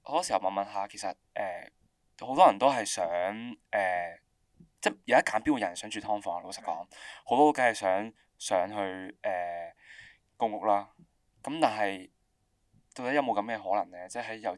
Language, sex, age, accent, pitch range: Chinese, male, 10-29, native, 100-115 Hz